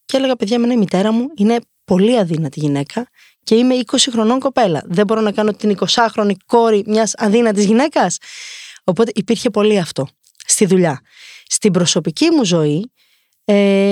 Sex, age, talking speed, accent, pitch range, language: female, 20-39, 160 wpm, native, 185-245 Hz, Greek